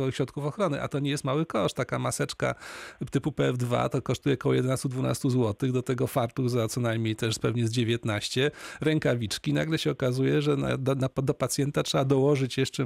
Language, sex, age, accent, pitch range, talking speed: Polish, male, 40-59, native, 125-145 Hz, 175 wpm